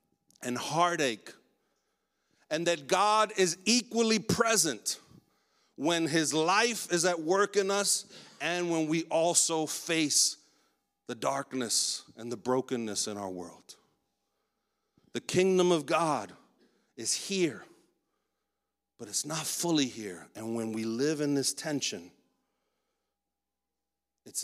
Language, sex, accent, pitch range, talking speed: English, male, American, 120-160 Hz, 120 wpm